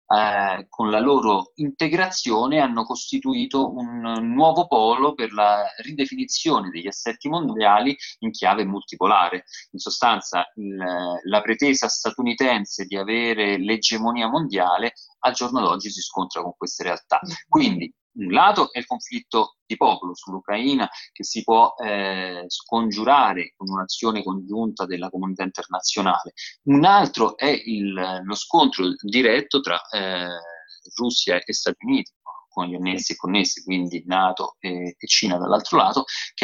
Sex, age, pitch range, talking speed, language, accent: male, 30-49, 95-130 Hz, 135 wpm, Italian, native